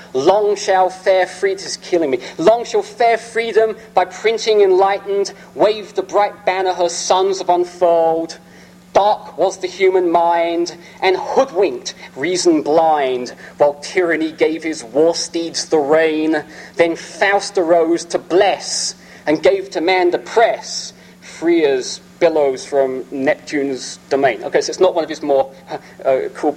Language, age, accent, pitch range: English, 40-59, British, 155-220 Hz